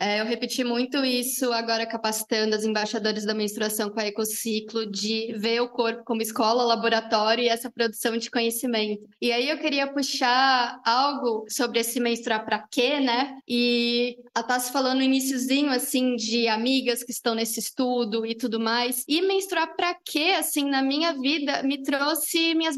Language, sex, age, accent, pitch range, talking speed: English, female, 20-39, Brazilian, 230-290 Hz, 170 wpm